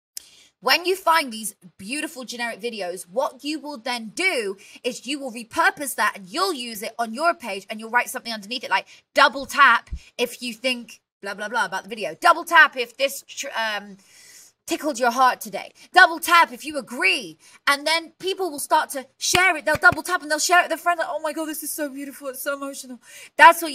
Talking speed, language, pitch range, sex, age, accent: 215 wpm, English, 220-310 Hz, female, 20-39, British